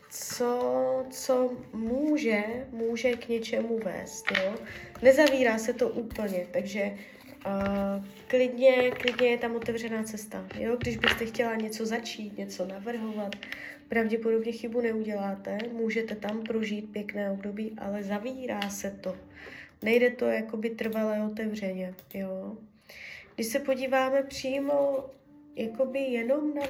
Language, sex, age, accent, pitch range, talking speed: Czech, female, 20-39, native, 215-255 Hz, 120 wpm